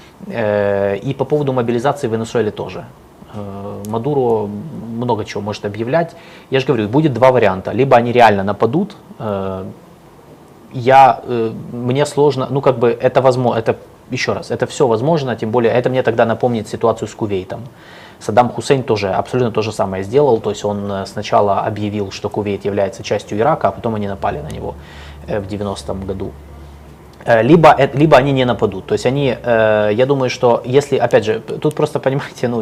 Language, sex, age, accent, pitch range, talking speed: Russian, male, 20-39, native, 105-130 Hz, 165 wpm